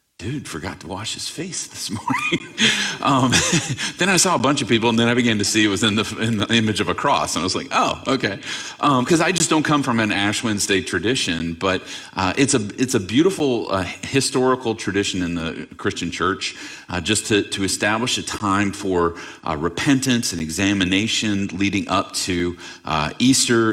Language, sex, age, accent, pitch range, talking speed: English, male, 40-59, American, 85-115 Hz, 200 wpm